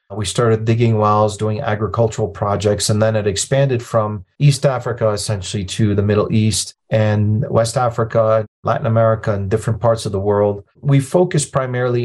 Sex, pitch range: male, 105-120 Hz